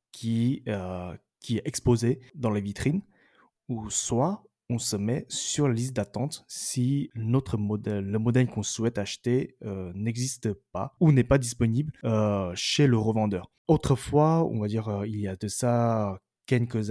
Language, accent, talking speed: French, French, 165 wpm